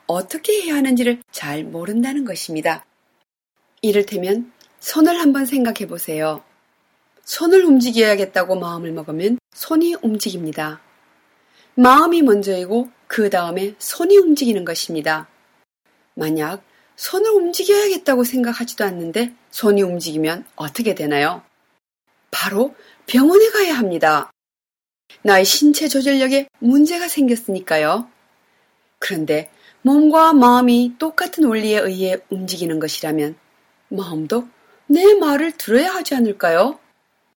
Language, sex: Korean, female